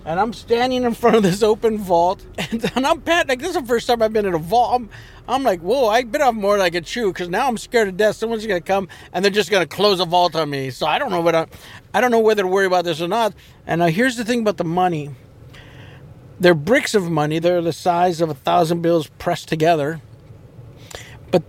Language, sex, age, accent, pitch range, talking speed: English, male, 50-69, American, 150-210 Hz, 265 wpm